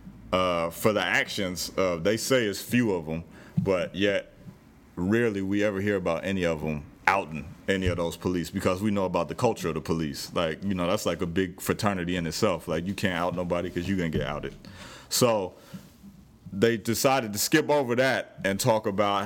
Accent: American